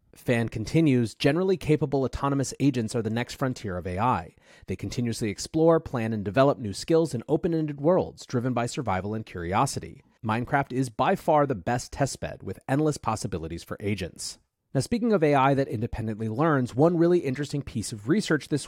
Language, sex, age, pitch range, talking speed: English, male, 30-49, 105-145 Hz, 175 wpm